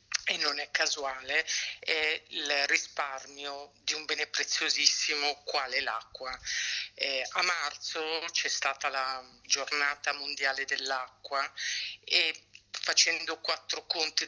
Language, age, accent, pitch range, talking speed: Italian, 50-69, native, 135-150 Hz, 110 wpm